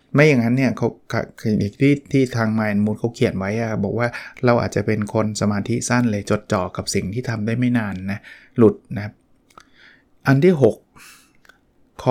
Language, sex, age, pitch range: Thai, male, 20-39, 110-130 Hz